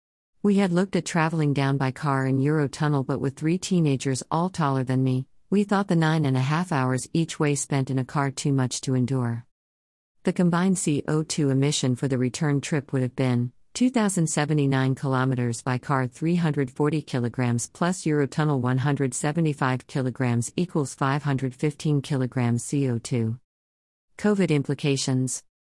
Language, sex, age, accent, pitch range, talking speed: English, female, 50-69, American, 130-155 Hz, 145 wpm